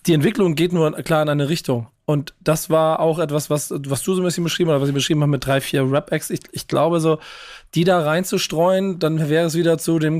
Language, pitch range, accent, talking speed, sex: German, 140-165 Hz, German, 255 wpm, male